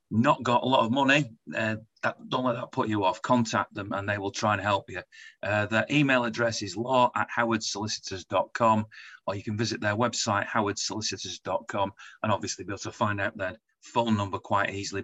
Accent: British